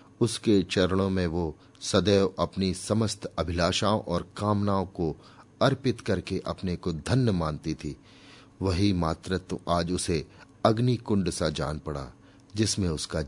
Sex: male